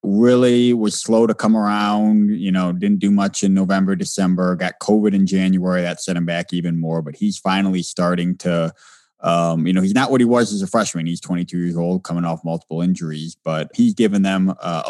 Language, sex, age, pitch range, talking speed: English, male, 20-39, 80-100 Hz, 215 wpm